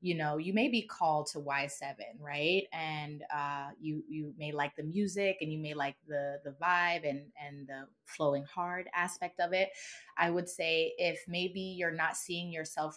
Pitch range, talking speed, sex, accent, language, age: 150-190 Hz, 190 wpm, female, American, English, 20-39